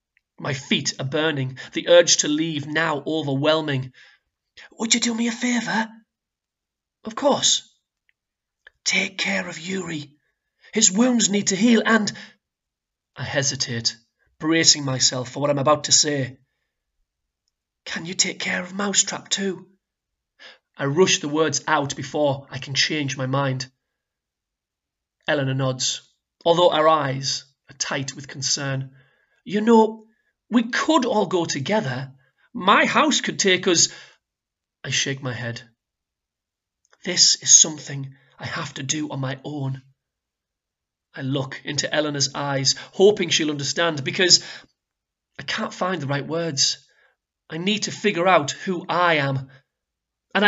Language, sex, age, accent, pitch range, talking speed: English, male, 30-49, British, 135-185 Hz, 135 wpm